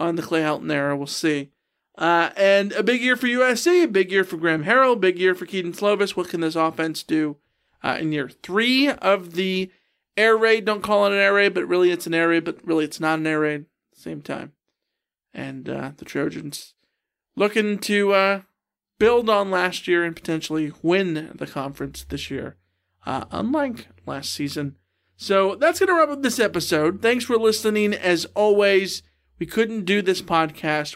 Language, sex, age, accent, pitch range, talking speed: English, male, 40-59, American, 165-240 Hz, 190 wpm